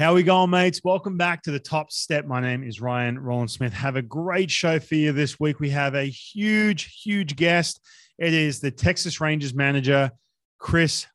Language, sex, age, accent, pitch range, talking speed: English, male, 20-39, Australian, 125-155 Hz, 200 wpm